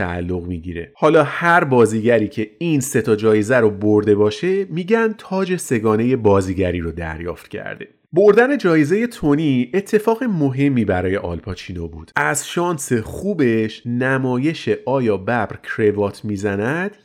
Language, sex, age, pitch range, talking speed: Persian, male, 30-49, 110-180 Hz, 130 wpm